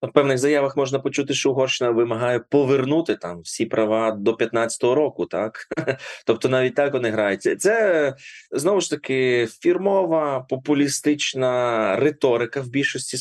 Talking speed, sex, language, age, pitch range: 140 wpm, male, Ukrainian, 20-39, 120-145 Hz